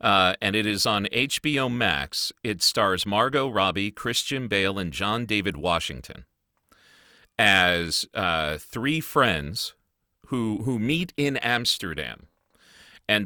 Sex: male